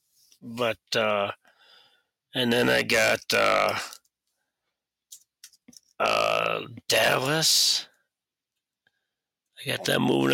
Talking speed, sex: 75 wpm, male